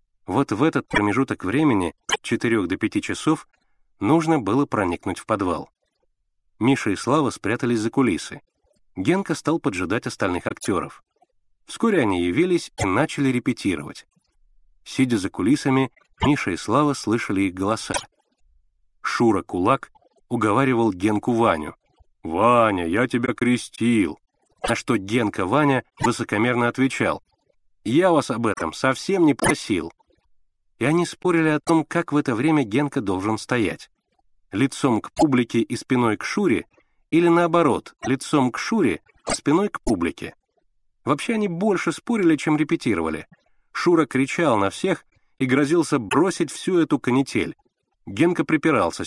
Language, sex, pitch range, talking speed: Russian, male, 115-160 Hz, 130 wpm